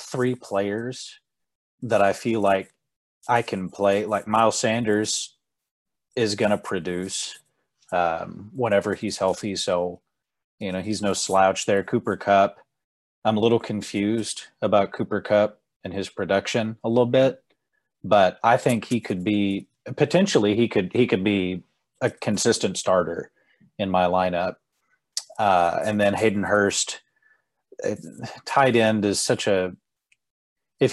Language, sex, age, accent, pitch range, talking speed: English, male, 30-49, American, 95-115 Hz, 135 wpm